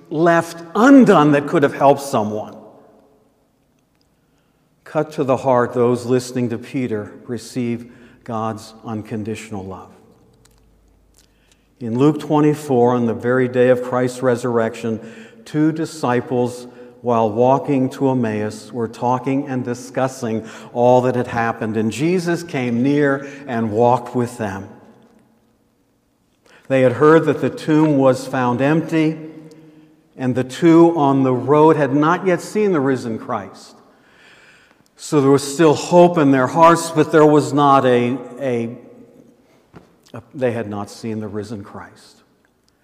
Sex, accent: male, American